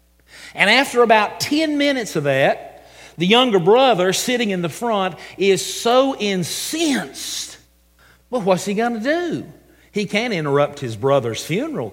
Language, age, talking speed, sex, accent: English, 50-69, 145 wpm, male, American